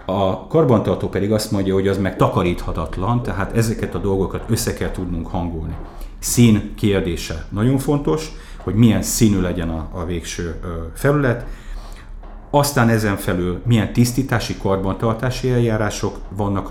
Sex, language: male, Hungarian